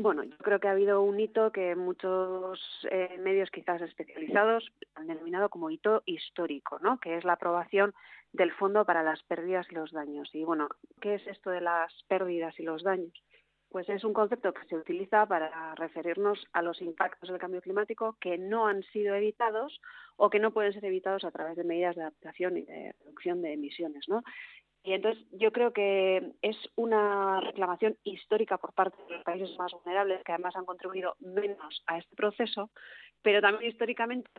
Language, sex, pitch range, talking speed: Spanish, female, 170-205 Hz, 190 wpm